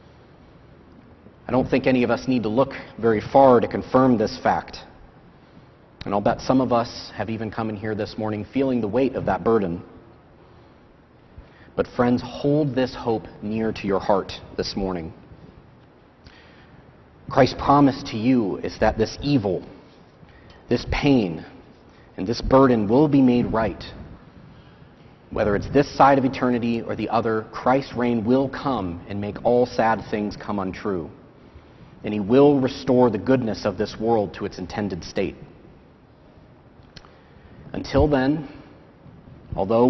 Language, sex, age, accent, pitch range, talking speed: English, male, 40-59, American, 110-130 Hz, 145 wpm